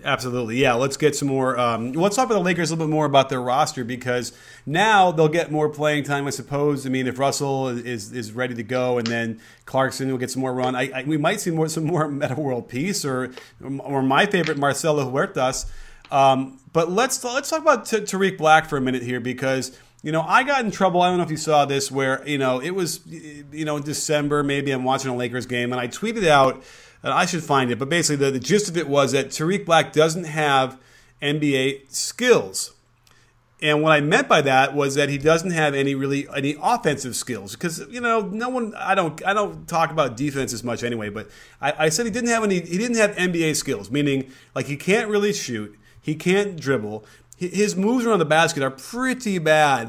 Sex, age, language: male, 30-49, English